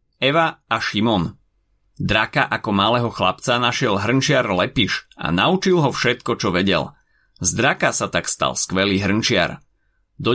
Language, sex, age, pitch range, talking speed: Slovak, male, 30-49, 95-135 Hz, 140 wpm